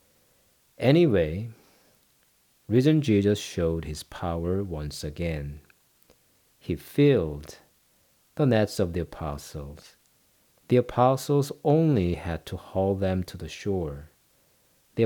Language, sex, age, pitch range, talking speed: English, male, 50-69, 85-120 Hz, 105 wpm